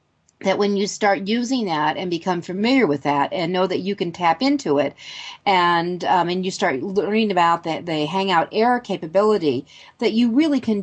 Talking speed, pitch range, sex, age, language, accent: 195 wpm, 160-205 Hz, female, 40-59, English, American